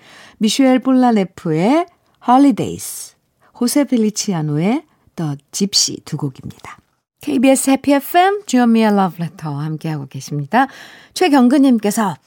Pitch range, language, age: 190-290 Hz, Korean, 50-69